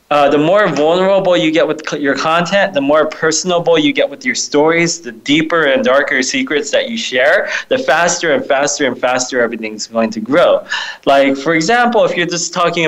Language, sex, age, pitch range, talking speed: English, male, 20-39, 125-165 Hz, 195 wpm